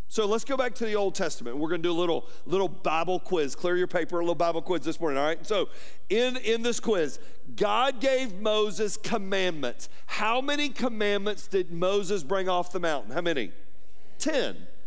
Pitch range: 155-245 Hz